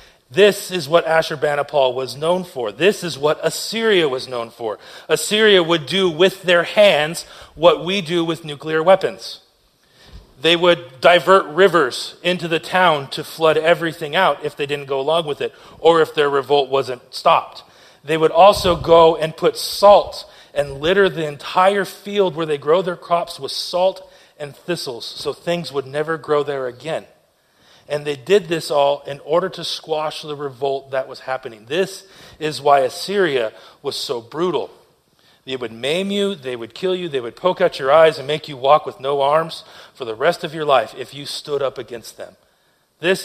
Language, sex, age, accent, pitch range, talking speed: English, male, 40-59, American, 150-185 Hz, 185 wpm